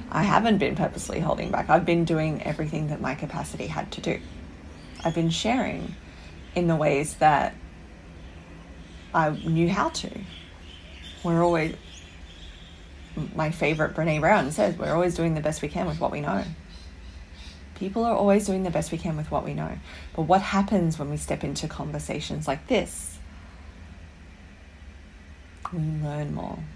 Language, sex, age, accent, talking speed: English, female, 30-49, Australian, 155 wpm